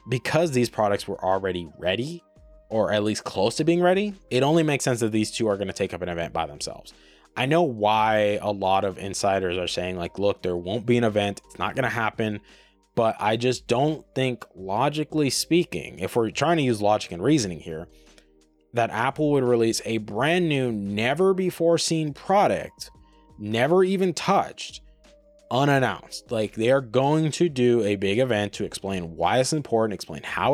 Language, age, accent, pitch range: English, 20-39, American, 95-125 Hz